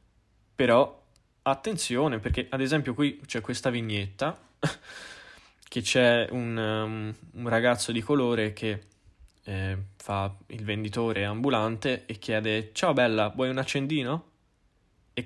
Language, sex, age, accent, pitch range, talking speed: Italian, male, 10-29, native, 105-135 Hz, 120 wpm